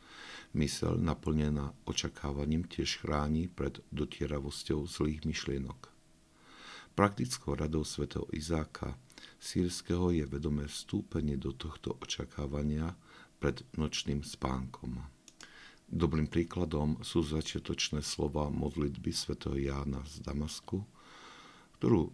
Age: 50-69